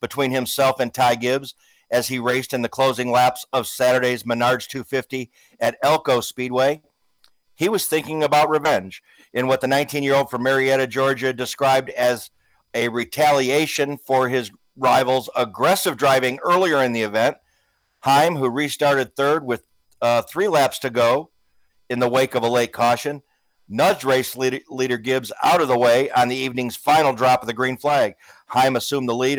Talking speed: 165 wpm